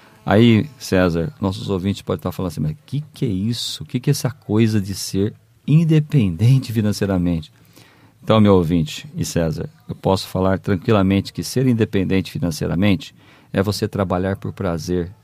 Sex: male